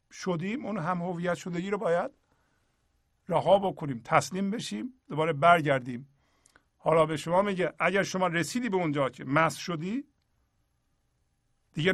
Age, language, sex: 50-69, Persian, male